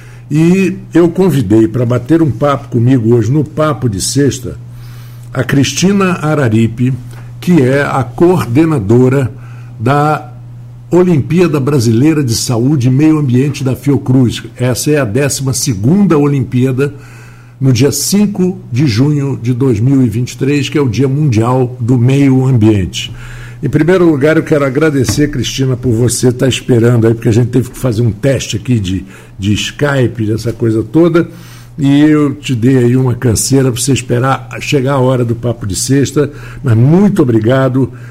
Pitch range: 120-145 Hz